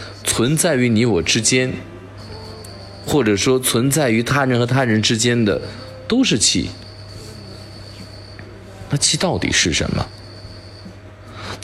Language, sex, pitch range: Chinese, male, 95-125 Hz